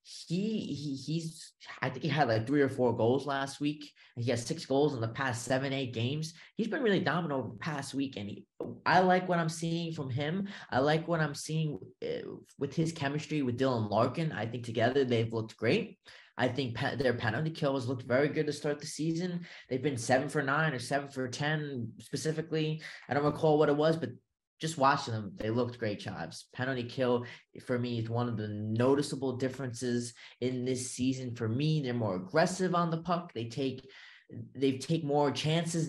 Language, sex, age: English, male, 20-39